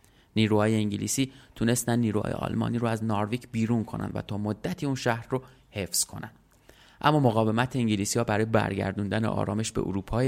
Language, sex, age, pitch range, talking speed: Persian, male, 30-49, 105-120 Hz, 160 wpm